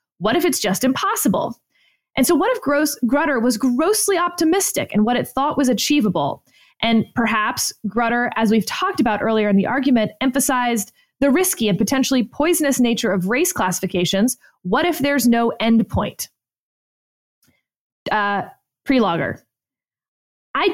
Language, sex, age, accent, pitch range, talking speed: English, female, 20-39, American, 215-285 Hz, 140 wpm